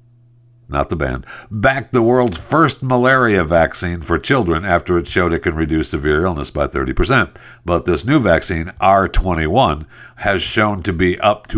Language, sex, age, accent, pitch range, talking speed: English, male, 60-79, American, 80-120 Hz, 165 wpm